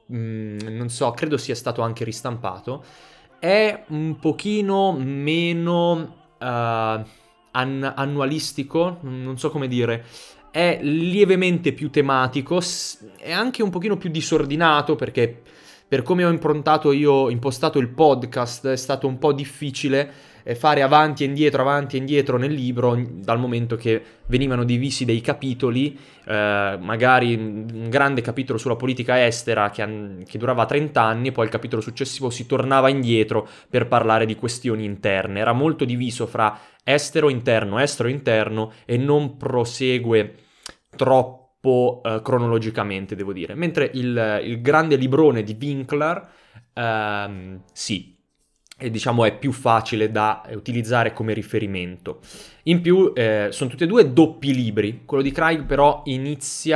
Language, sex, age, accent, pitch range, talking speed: Italian, male, 20-39, native, 110-145 Hz, 140 wpm